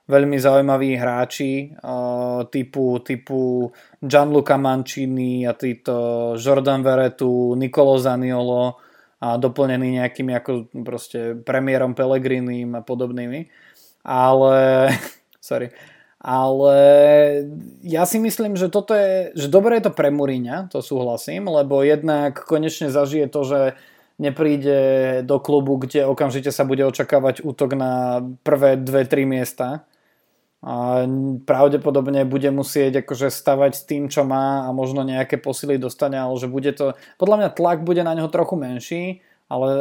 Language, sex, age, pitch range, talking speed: Slovak, male, 20-39, 125-145 Hz, 130 wpm